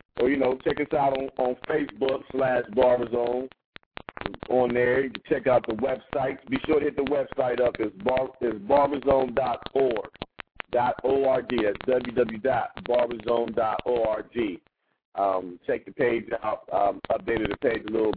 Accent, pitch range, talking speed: American, 115-135 Hz, 140 wpm